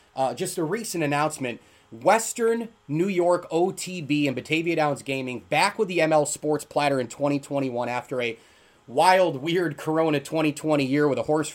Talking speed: 160 wpm